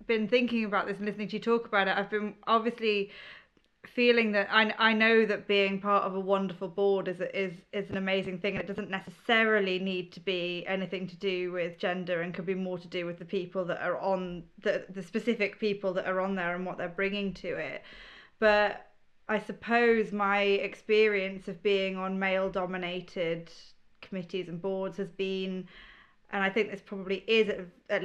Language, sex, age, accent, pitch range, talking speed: English, female, 20-39, British, 180-205 Hz, 195 wpm